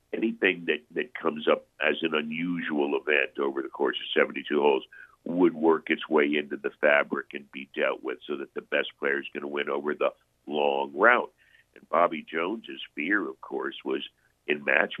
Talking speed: 190 wpm